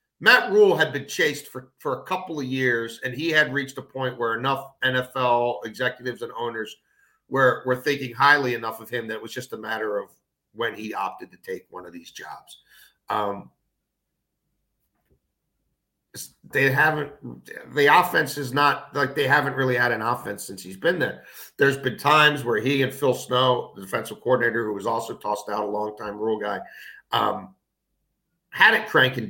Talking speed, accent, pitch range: 180 wpm, American, 120-140 Hz